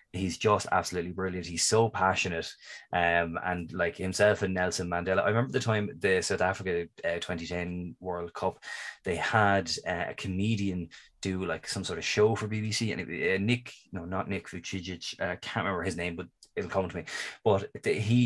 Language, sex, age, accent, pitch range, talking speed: English, male, 20-39, Irish, 90-110 Hz, 185 wpm